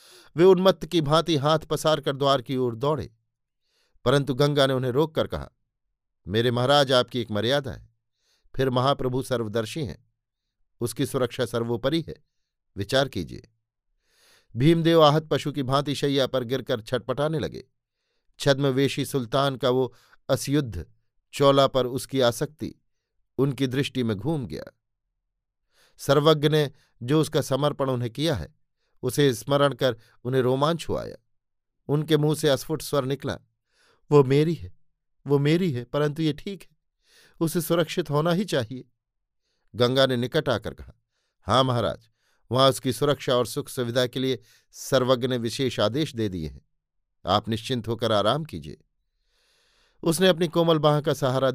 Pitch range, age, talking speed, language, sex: 115-145 Hz, 50-69, 145 wpm, Hindi, male